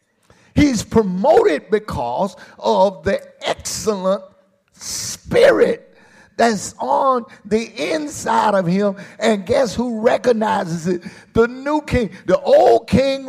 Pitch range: 160-235 Hz